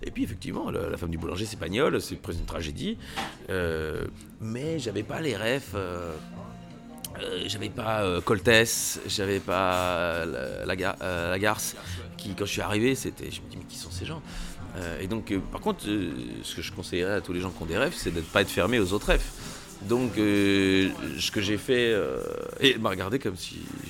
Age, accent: 30-49, French